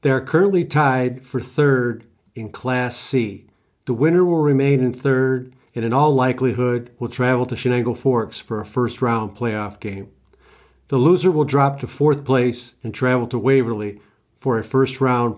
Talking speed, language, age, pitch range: 170 wpm, English, 50-69, 120-140 Hz